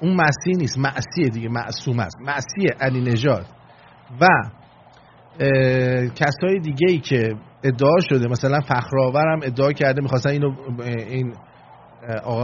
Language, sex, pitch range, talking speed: English, male, 130-180 Hz, 115 wpm